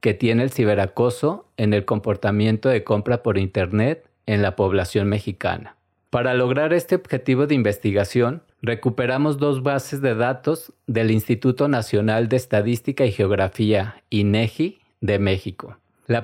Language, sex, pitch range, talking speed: Spanish, male, 105-125 Hz, 135 wpm